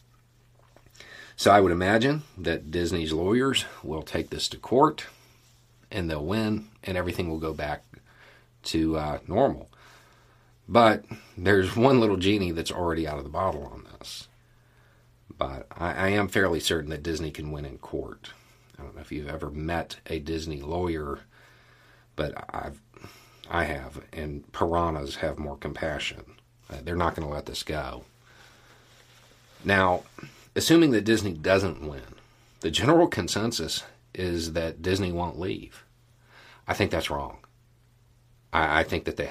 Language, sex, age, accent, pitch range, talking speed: English, male, 50-69, American, 80-115 Hz, 150 wpm